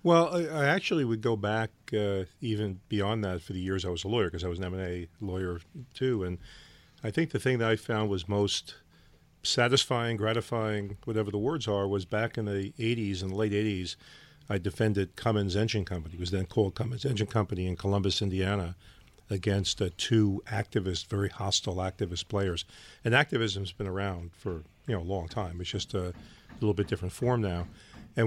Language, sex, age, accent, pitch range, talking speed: English, male, 40-59, American, 95-115 Hz, 195 wpm